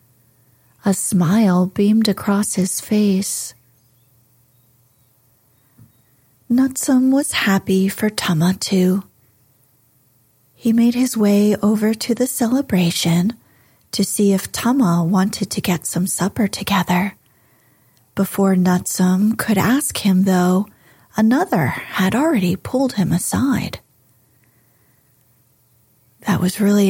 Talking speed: 100 wpm